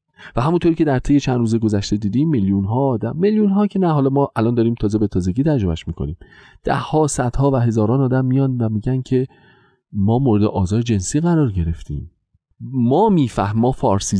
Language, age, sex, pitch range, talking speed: Persian, 40-59, male, 90-125 Hz, 185 wpm